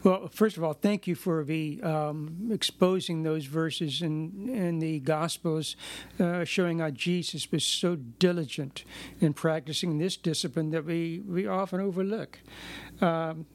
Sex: male